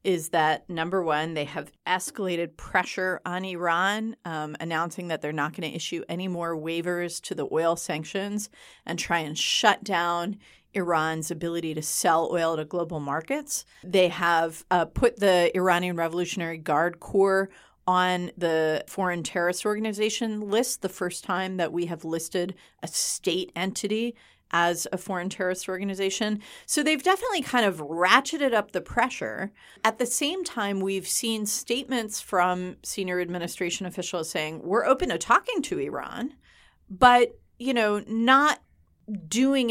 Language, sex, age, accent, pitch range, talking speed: English, female, 30-49, American, 170-220 Hz, 150 wpm